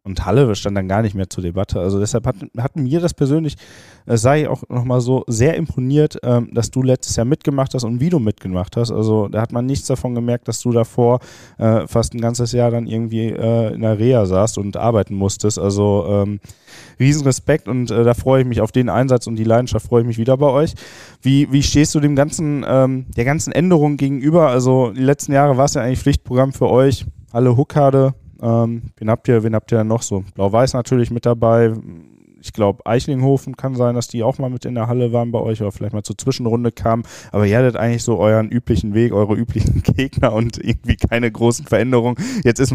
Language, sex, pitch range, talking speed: German, male, 110-130 Hz, 220 wpm